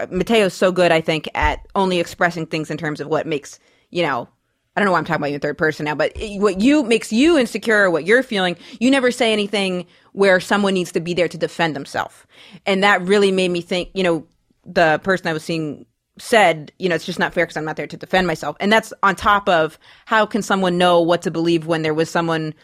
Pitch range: 160-200 Hz